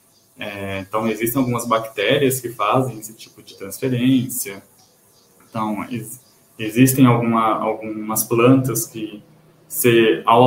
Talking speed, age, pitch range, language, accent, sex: 90 wpm, 20-39, 115-135 Hz, Portuguese, Brazilian, male